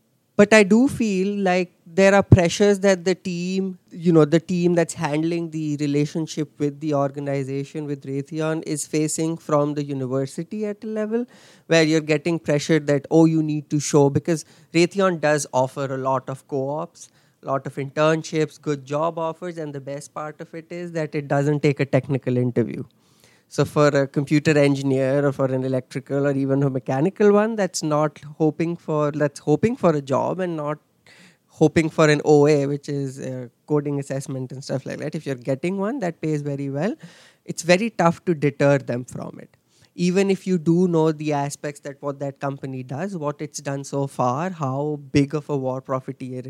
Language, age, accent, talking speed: English, 20-39, Indian, 190 wpm